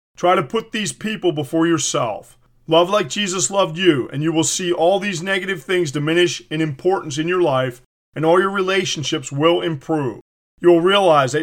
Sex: male